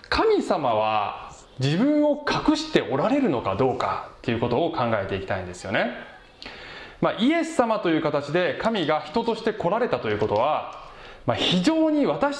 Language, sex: Japanese, male